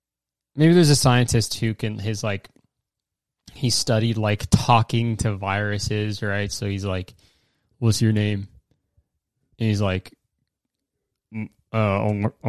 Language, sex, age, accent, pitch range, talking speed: English, male, 20-39, American, 105-135 Hz, 120 wpm